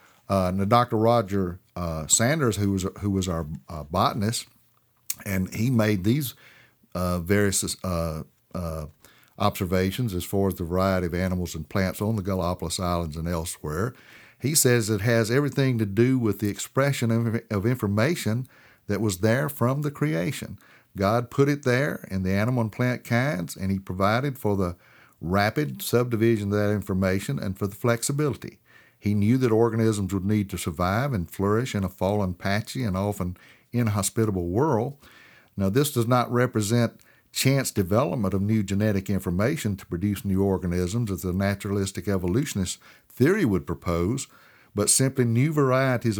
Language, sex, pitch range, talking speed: English, male, 95-120 Hz, 160 wpm